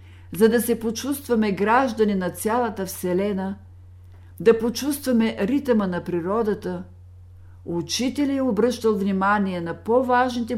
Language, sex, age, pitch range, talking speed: Bulgarian, female, 50-69, 145-220 Hz, 110 wpm